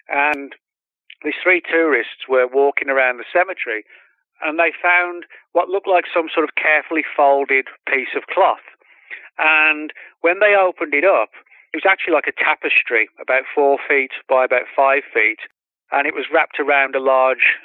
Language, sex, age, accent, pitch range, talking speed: English, male, 40-59, British, 130-165 Hz, 165 wpm